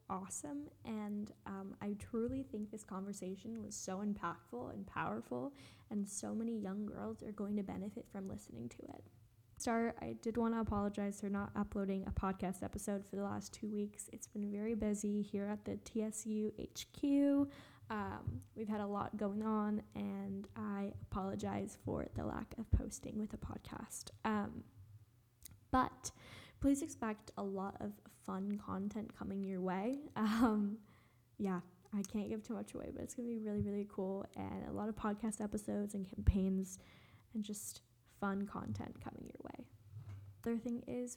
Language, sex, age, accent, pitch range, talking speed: English, female, 10-29, American, 190-220 Hz, 170 wpm